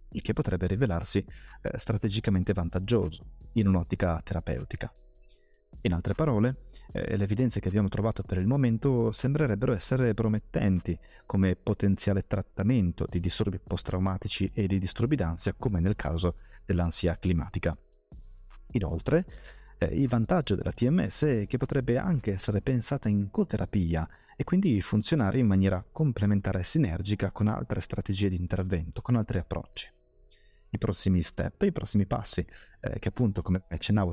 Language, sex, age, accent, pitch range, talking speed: Italian, male, 30-49, native, 90-115 Hz, 135 wpm